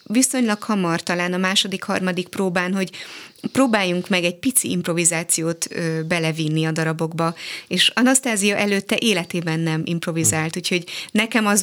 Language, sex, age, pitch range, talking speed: Hungarian, female, 20-39, 170-195 Hz, 125 wpm